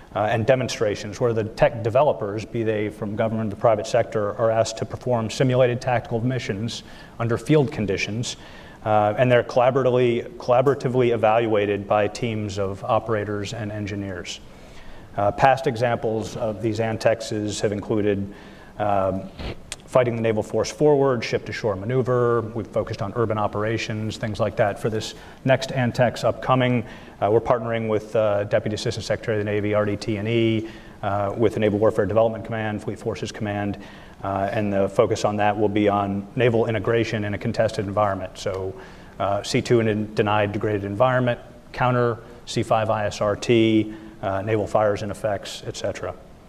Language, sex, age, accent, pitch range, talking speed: English, male, 40-59, American, 105-120 Hz, 155 wpm